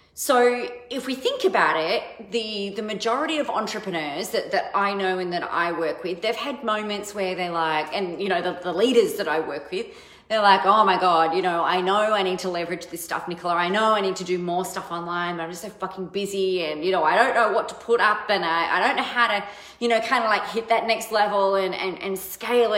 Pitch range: 185-240 Hz